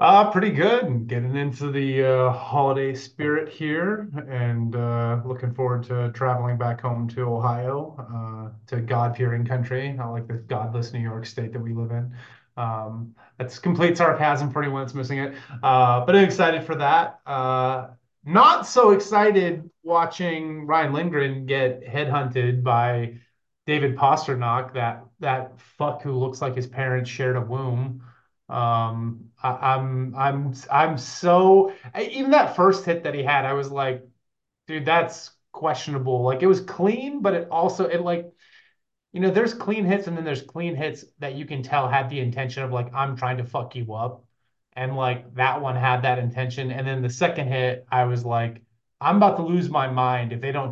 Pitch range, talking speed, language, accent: 125-155 Hz, 175 wpm, English, American